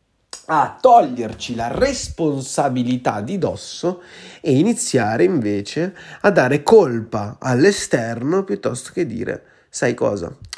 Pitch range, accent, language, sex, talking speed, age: 115-155 Hz, native, Italian, male, 100 wpm, 30-49